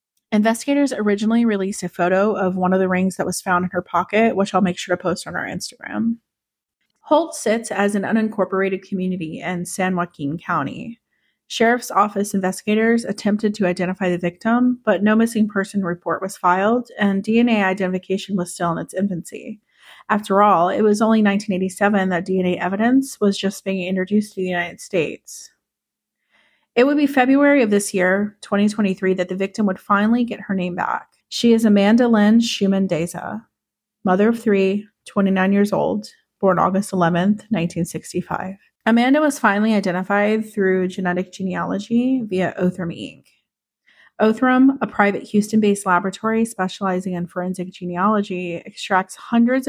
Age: 30-49